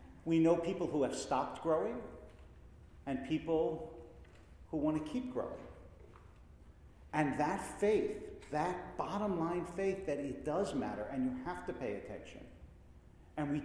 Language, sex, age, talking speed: English, male, 50-69, 140 wpm